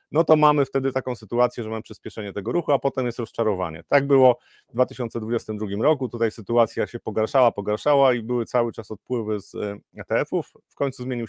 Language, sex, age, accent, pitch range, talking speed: Polish, male, 30-49, native, 115-130 Hz, 185 wpm